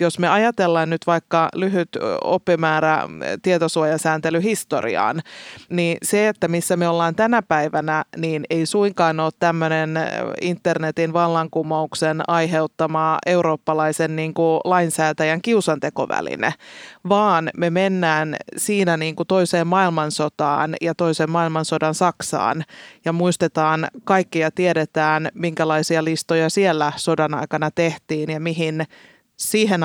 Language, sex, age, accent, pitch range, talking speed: Finnish, female, 30-49, native, 155-180 Hz, 105 wpm